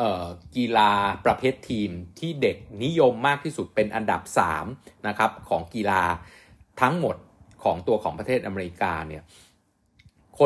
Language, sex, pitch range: Thai, male, 95-120 Hz